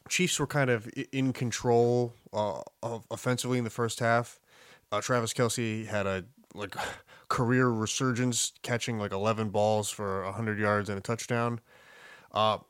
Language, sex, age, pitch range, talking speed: English, male, 20-39, 105-125 Hz, 155 wpm